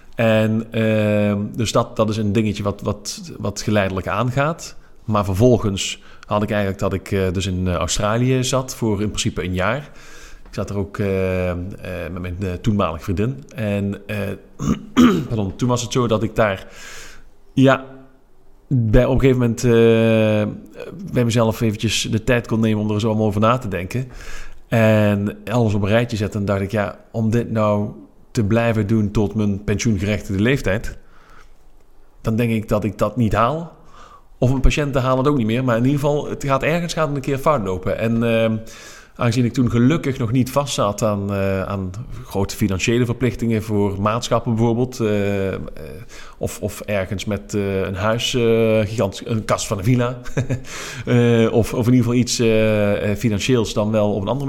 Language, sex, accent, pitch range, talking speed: Dutch, male, Dutch, 105-125 Hz, 180 wpm